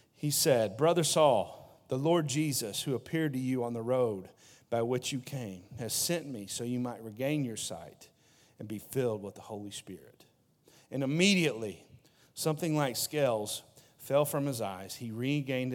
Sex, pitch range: male, 130-160 Hz